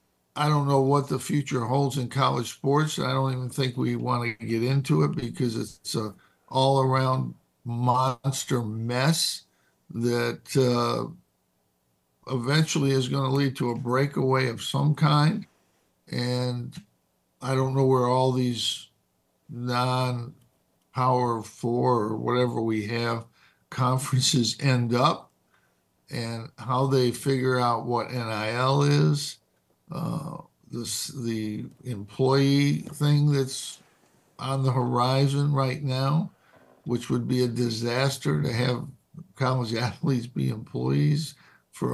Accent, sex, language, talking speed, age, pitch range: American, male, English, 125 wpm, 60-79, 115-135 Hz